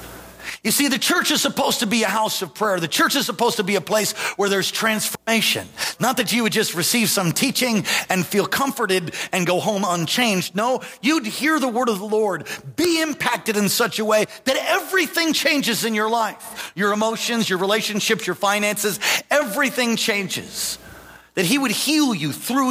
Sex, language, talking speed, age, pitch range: male, English, 190 wpm, 40-59, 195-265 Hz